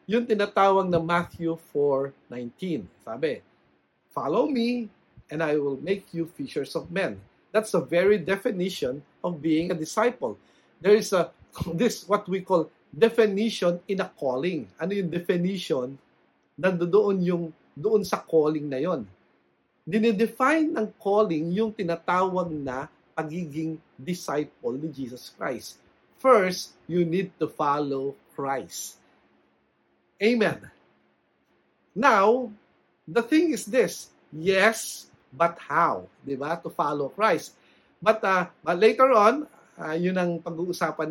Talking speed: 125 wpm